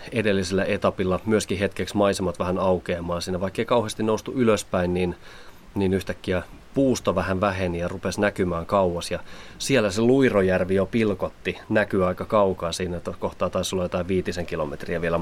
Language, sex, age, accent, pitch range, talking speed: Finnish, male, 30-49, native, 85-100 Hz, 160 wpm